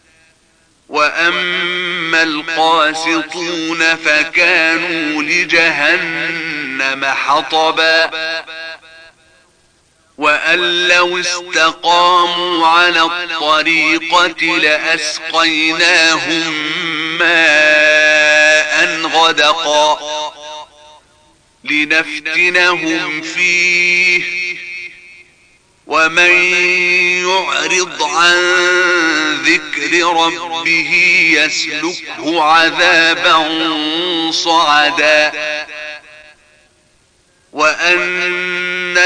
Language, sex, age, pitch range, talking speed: Arabic, male, 40-59, 155-175 Hz, 35 wpm